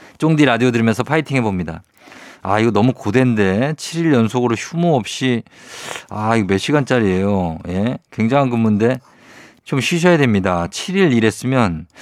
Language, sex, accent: Korean, male, native